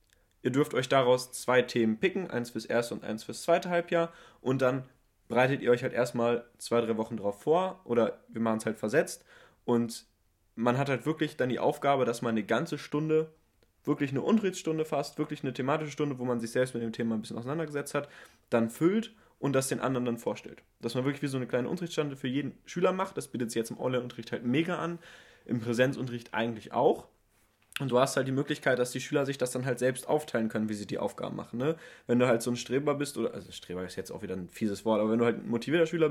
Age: 20-39